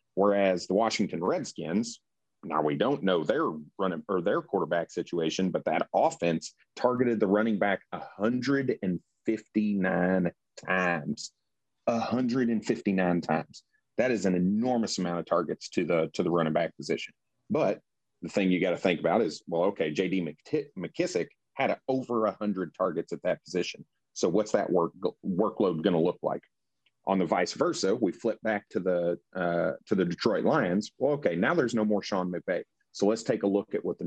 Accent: American